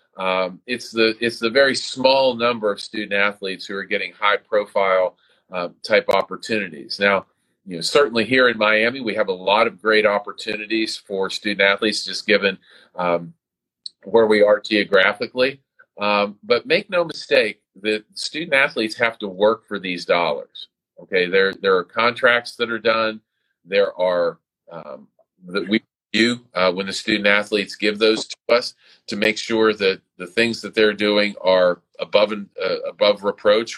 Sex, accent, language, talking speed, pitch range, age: male, American, English, 165 wpm, 100-140 Hz, 40-59